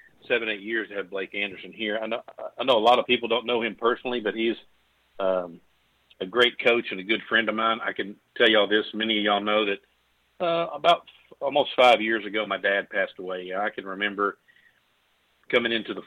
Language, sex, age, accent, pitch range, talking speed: English, male, 50-69, American, 100-125 Hz, 230 wpm